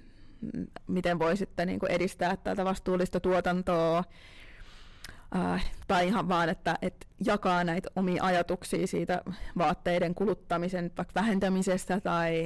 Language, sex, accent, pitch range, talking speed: Finnish, female, native, 170-190 Hz, 115 wpm